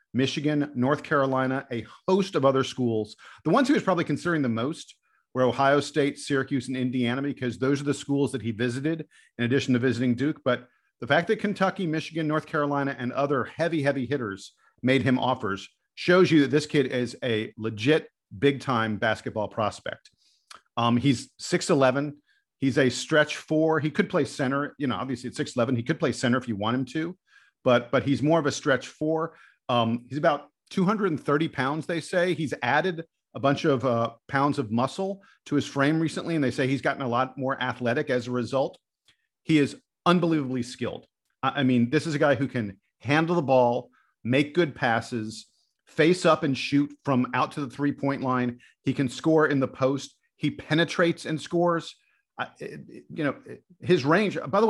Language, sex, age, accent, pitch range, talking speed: English, male, 50-69, American, 125-155 Hz, 195 wpm